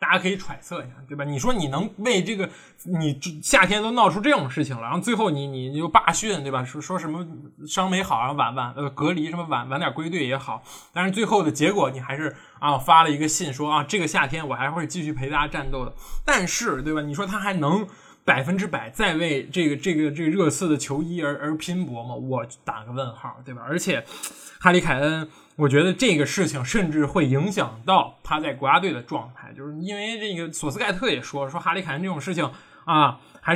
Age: 20-39